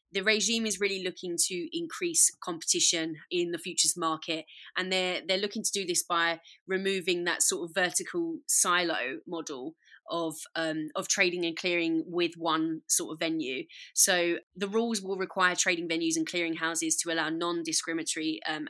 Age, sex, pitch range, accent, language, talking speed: 20-39, female, 165-230 Hz, British, English, 170 wpm